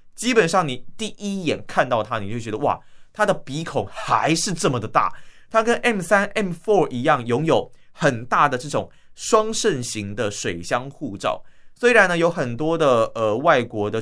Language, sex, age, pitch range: Chinese, male, 20-39, 120-170 Hz